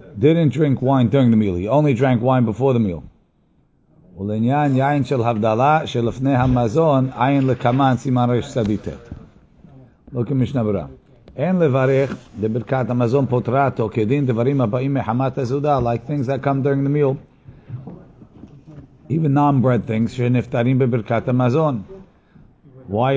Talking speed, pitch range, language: 75 wpm, 115-140 Hz, English